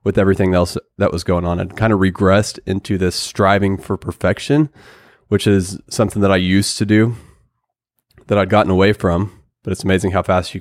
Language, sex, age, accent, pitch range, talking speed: English, male, 20-39, American, 95-110 Hz, 200 wpm